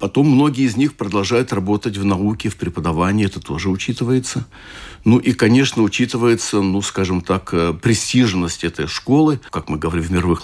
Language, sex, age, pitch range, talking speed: Russian, male, 60-79, 95-120 Hz, 160 wpm